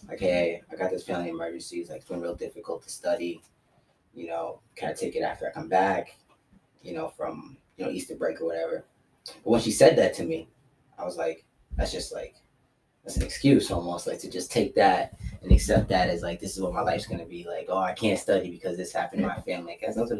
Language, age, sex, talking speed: English, 20-39, male, 245 wpm